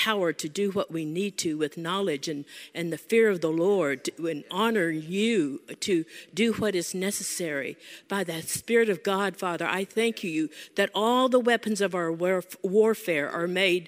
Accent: American